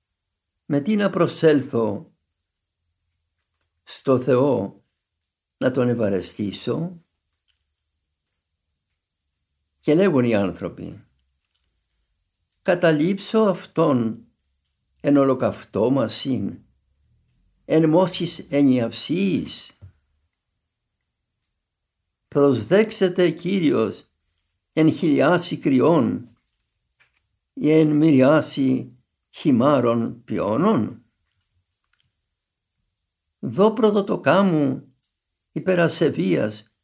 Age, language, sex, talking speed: 60-79, Greek, male, 55 wpm